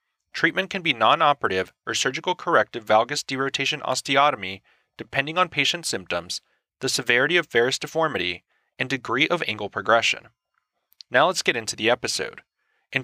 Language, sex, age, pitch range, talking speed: English, male, 30-49, 115-155 Hz, 145 wpm